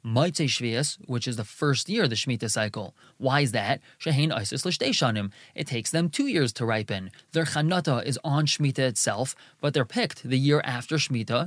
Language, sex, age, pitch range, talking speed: English, male, 20-39, 130-170 Hz, 185 wpm